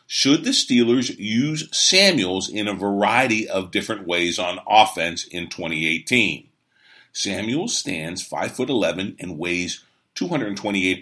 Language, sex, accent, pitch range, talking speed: English, male, American, 100-150 Hz, 125 wpm